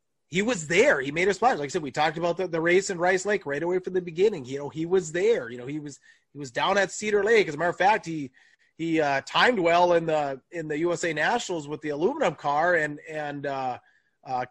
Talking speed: 260 wpm